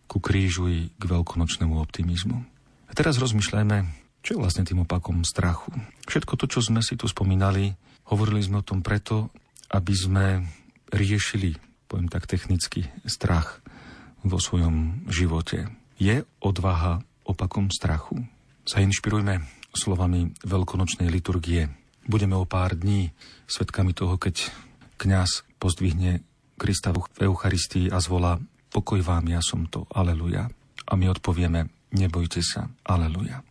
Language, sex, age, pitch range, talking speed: Slovak, male, 40-59, 90-110 Hz, 130 wpm